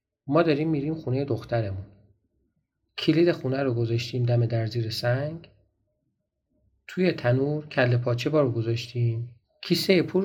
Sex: male